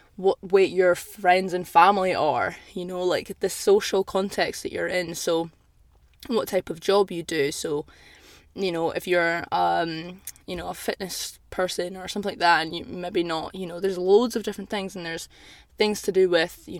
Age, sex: 10-29, female